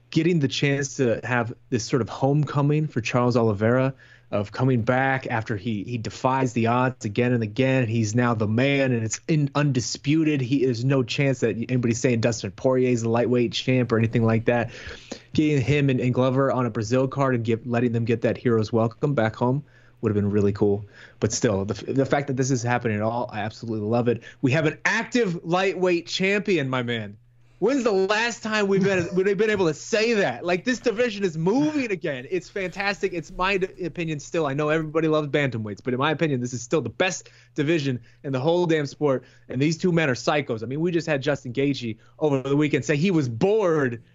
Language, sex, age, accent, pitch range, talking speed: English, male, 30-49, American, 120-165 Hz, 215 wpm